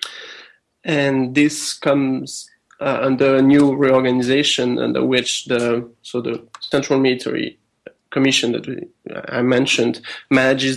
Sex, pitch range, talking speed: male, 130-150 Hz, 115 wpm